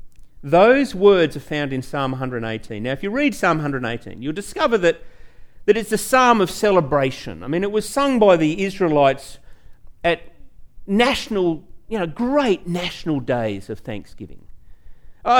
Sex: male